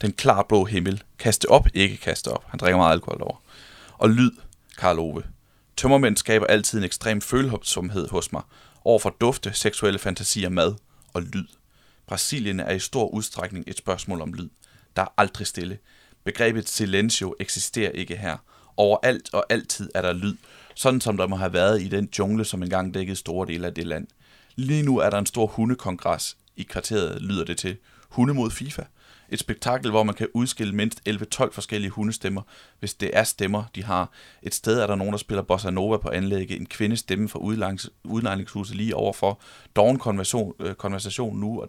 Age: 30-49